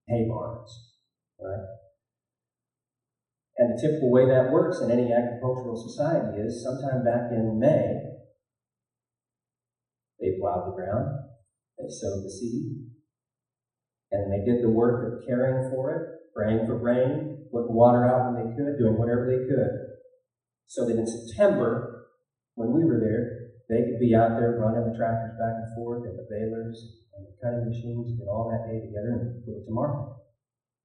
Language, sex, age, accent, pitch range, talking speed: English, male, 40-59, American, 115-135 Hz, 165 wpm